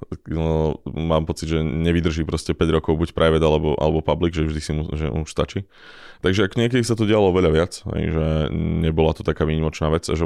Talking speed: 200 wpm